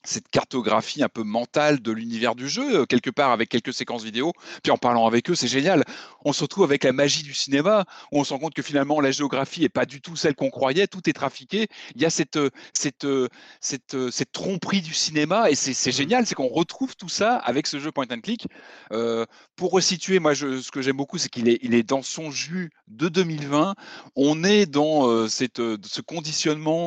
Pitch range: 120-160 Hz